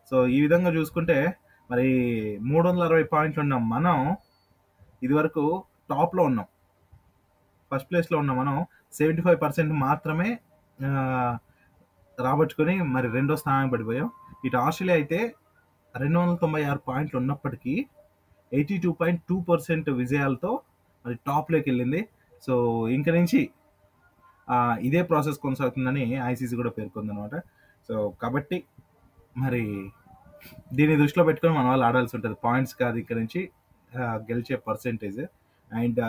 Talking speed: 120 wpm